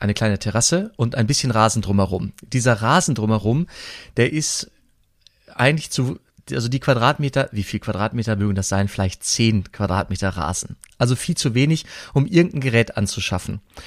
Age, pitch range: 30-49, 110-140 Hz